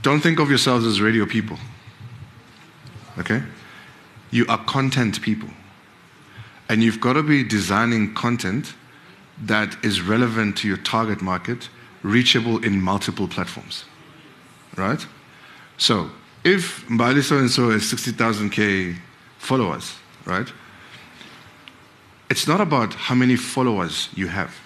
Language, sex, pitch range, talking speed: English, male, 100-120 Hz, 110 wpm